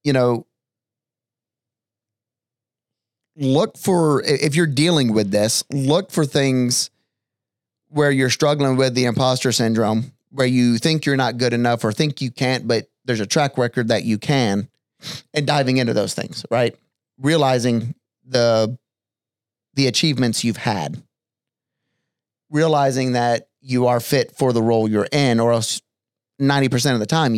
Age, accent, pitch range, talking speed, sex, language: 30-49, American, 115-140 Hz, 145 wpm, male, English